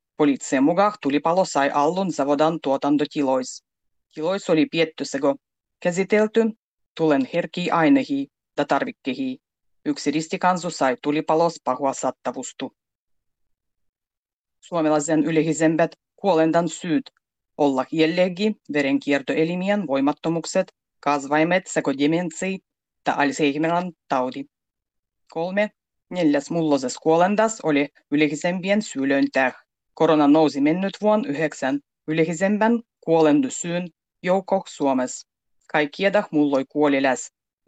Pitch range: 145-200 Hz